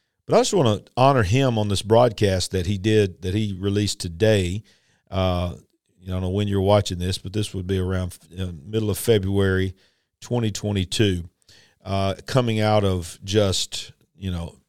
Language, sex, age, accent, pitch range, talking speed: English, male, 50-69, American, 95-115 Hz, 175 wpm